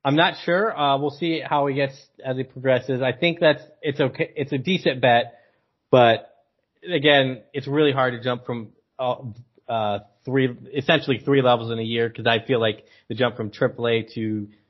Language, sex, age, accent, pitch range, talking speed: English, male, 30-49, American, 110-135 Hz, 190 wpm